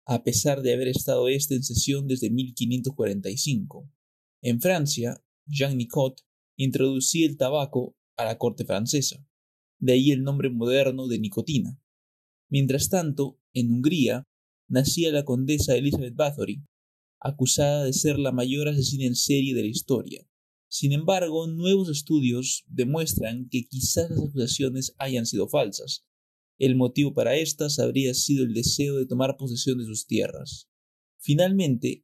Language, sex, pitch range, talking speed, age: Spanish, male, 120-145 Hz, 140 wpm, 30-49